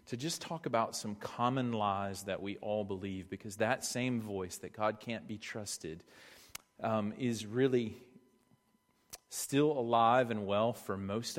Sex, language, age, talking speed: male, English, 40-59, 155 wpm